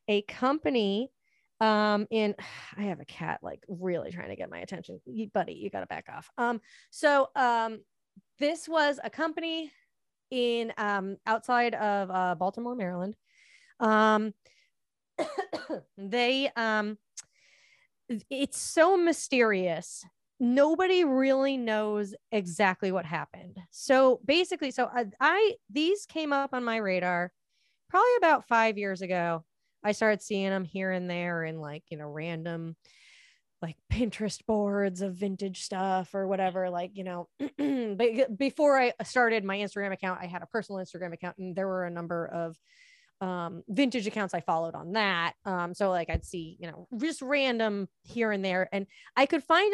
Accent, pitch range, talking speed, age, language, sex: American, 190-265 Hz, 155 wpm, 20-39, English, female